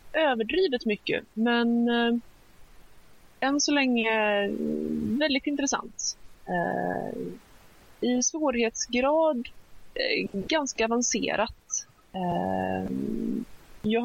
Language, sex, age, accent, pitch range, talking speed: Swedish, female, 20-39, native, 185-250 Hz, 75 wpm